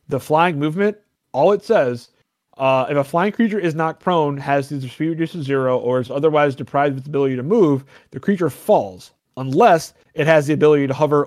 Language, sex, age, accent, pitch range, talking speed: English, male, 30-49, American, 125-155 Hz, 210 wpm